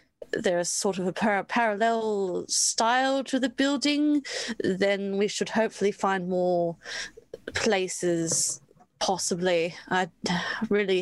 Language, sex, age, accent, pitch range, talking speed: English, female, 30-49, British, 180-220 Hz, 105 wpm